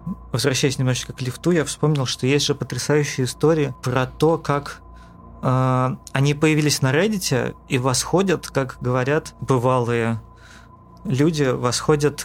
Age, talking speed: 20-39, 125 wpm